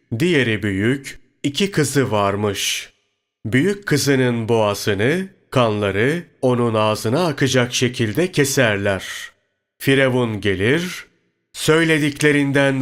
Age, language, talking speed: 40-59, Turkish, 80 wpm